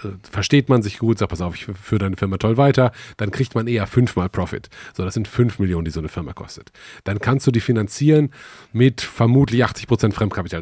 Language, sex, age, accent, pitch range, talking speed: German, male, 30-49, German, 105-130 Hz, 220 wpm